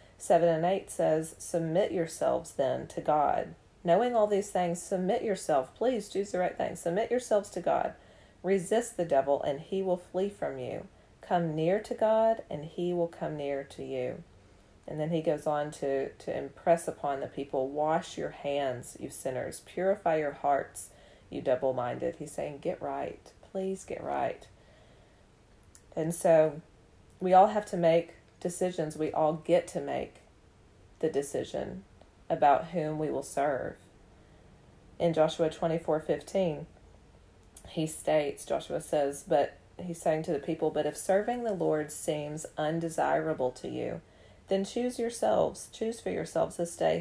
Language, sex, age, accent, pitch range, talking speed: English, female, 40-59, American, 145-180 Hz, 155 wpm